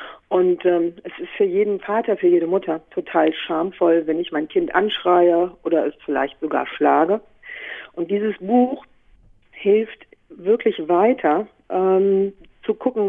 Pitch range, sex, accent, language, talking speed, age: 170-235 Hz, female, German, German, 140 wpm, 50-69